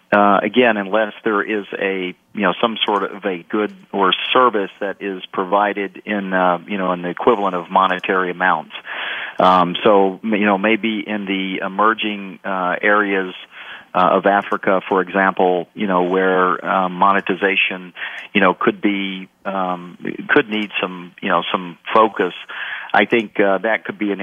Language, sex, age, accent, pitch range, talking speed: English, male, 40-59, American, 95-105 Hz, 165 wpm